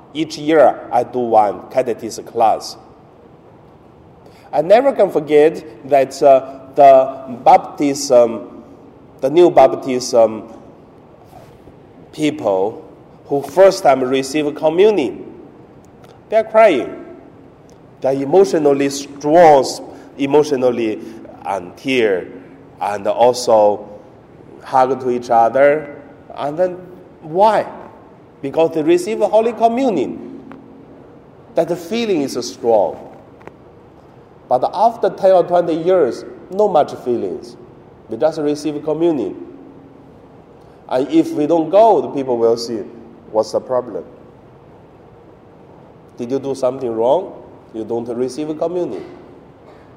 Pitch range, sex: 130-185 Hz, male